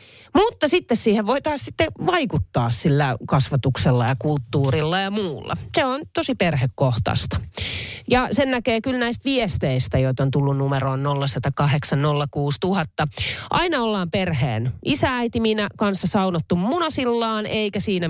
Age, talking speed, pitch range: 30-49, 125 wpm, 130-195 Hz